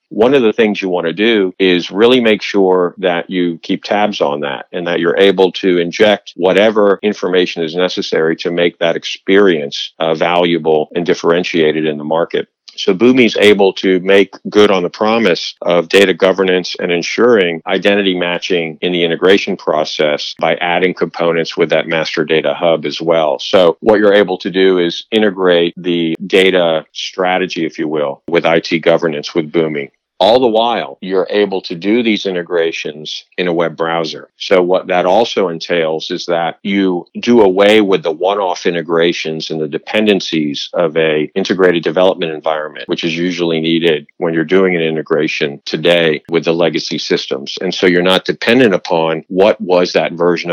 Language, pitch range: English, 85-95 Hz